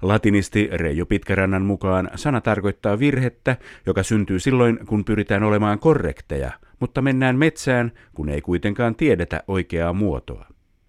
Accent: native